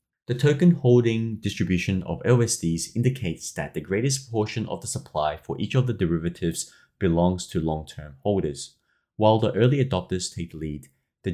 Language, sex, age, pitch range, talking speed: English, male, 30-49, 85-120 Hz, 165 wpm